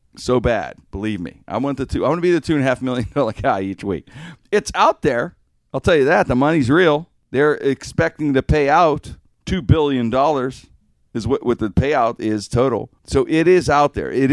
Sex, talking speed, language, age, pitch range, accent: male, 220 wpm, English, 50-69, 100-135 Hz, American